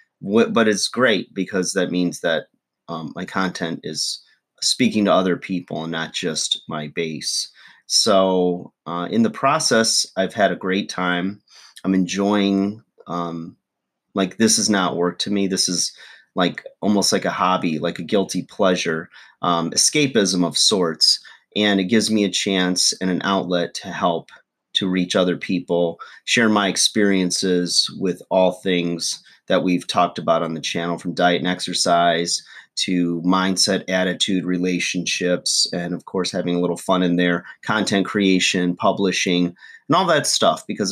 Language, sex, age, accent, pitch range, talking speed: English, male, 30-49, American, 90-100 Hz, 160 wpm